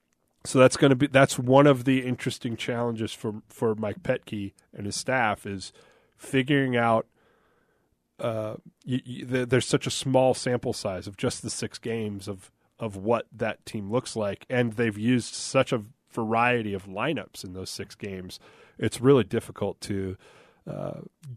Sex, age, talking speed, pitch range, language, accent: male, 30-49, 165 wpm, 105-125 Hz, English, American